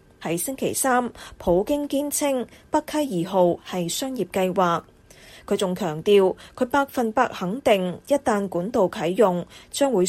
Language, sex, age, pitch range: Chinese, female, 20-39, 180-255 Hz